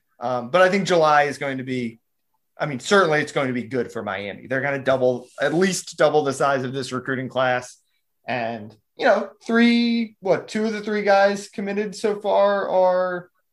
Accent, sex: American, male